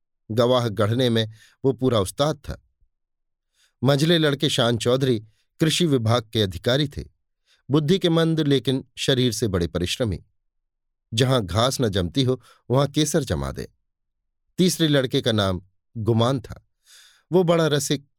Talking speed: 140 wpm